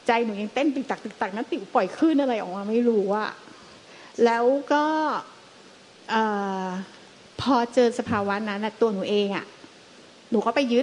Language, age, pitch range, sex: Thai, 30-49, 205-270 Hz, female